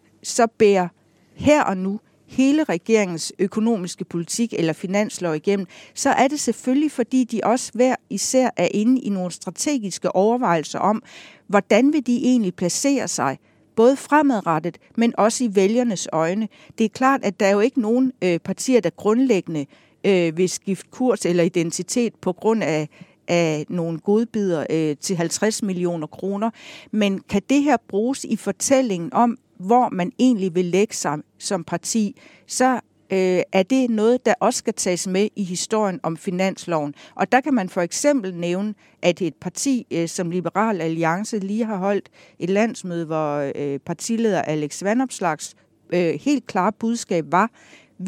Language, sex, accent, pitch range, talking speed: Danish, female, native, 175-235 Hz, 160 wpm